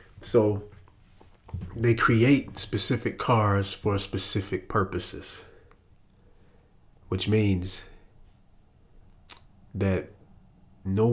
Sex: male